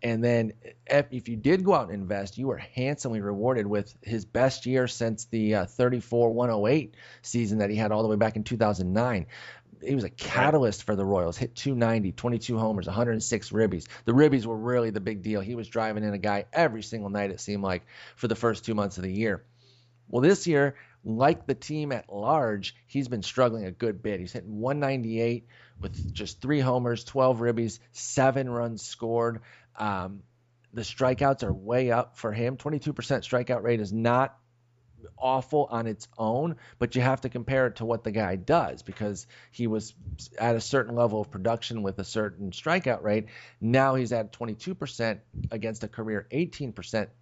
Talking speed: 190 wpm